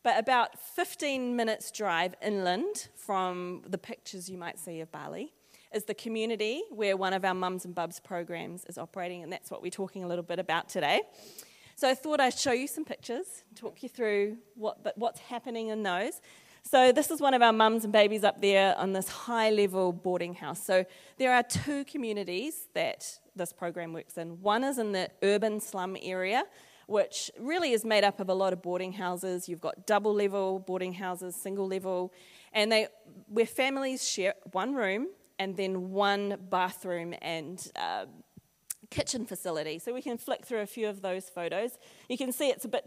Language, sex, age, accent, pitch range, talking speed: English, female, 30-49, Australian, 180-230 Hz, 190 wpm